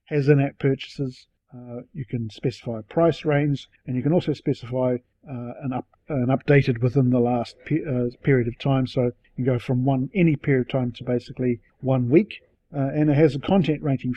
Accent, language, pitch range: Australian, English, 125-145 Hz